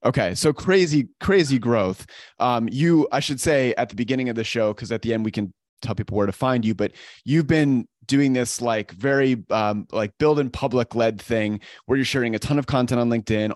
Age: 30-49